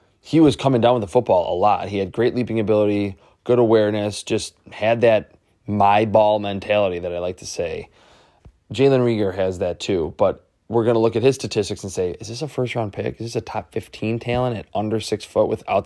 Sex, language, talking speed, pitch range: male, English, 215 wpm, 100-120 Hz